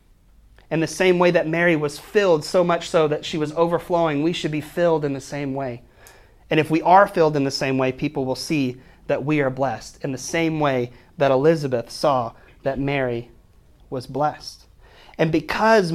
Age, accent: 30-49, American